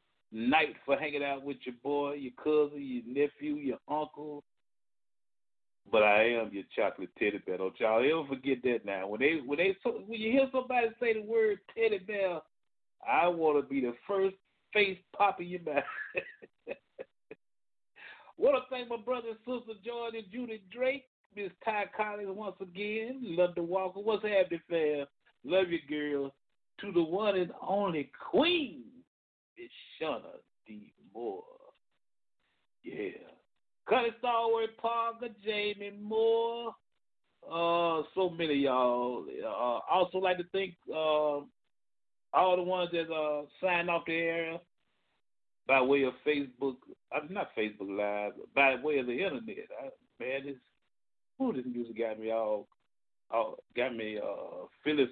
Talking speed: 155 wpm